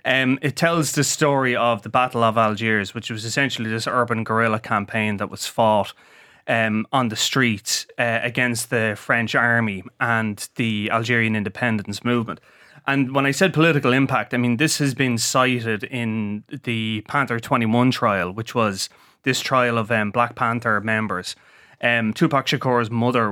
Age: 30-49